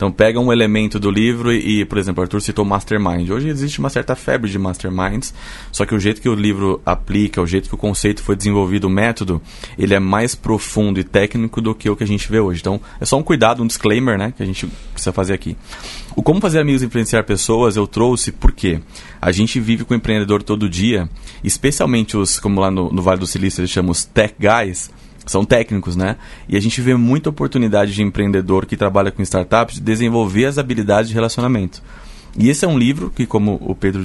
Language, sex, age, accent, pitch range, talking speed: Portuguese, male, 20-39, Brazilian, 100-115 Hz, 220 wpm